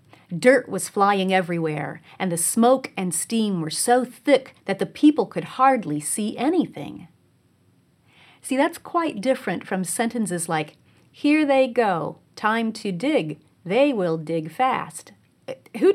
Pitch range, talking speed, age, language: 180-260 Hz, 140 wpm, 40-59, English